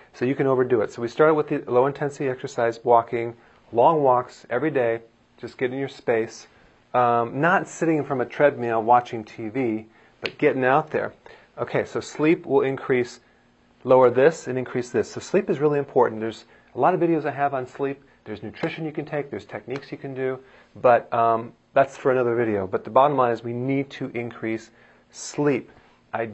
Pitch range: 120-140 Hz